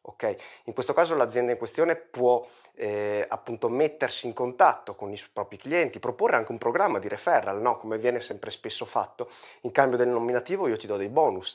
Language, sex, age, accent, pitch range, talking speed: Italian, male, 30-49, native, 115-140 Hz, 190 wpm